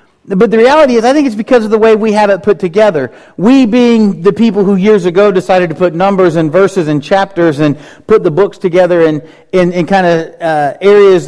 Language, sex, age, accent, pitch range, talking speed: English, male, 40-59, American, 150-200 Hz, 230 wpm